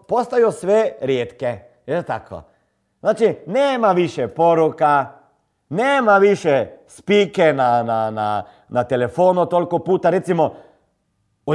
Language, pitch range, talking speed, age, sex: Croatian, 165-230 Hz, 110 wpm, 40-59, male